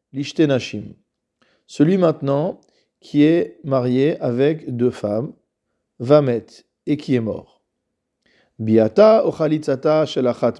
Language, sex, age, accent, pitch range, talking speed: French, male, 40-59, French, 120-155 Hz, 100 wpm